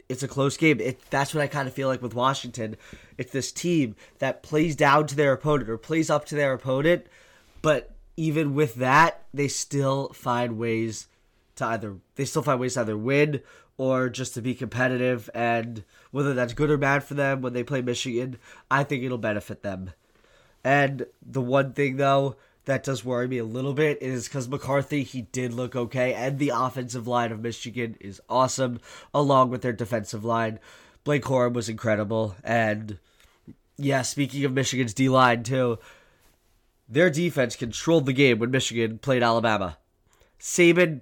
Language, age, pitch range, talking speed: English, 20-39, 120-145 Hz, 175 wpm